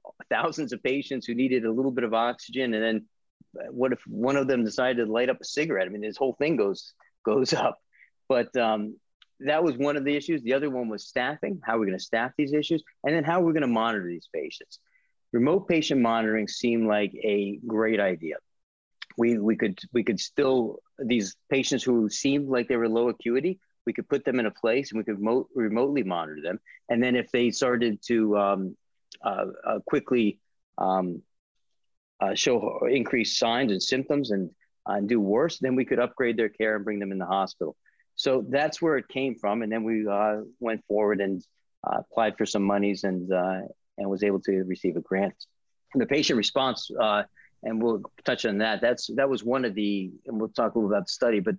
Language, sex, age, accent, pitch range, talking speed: English, male, 40-59, American, 105-130 Hz, 215 wpm